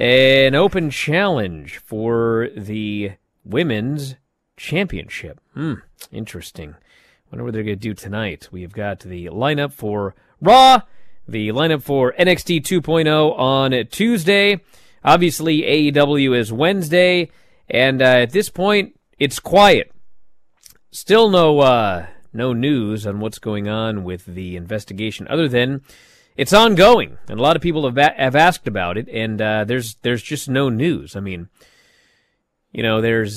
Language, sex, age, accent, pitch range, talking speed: English, male, 30-49, American, 110-150 Hz, 145 wpm